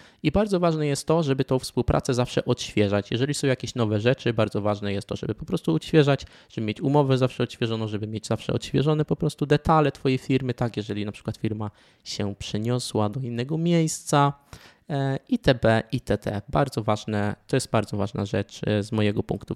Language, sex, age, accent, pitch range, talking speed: Polish, male, 20-39, native, 105-135 Hz, 185 wpm